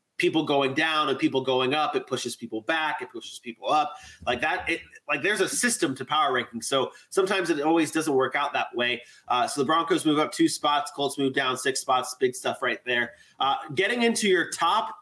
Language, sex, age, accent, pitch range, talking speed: English, male, 30-49, American, 150-245 Hz, 225 wpm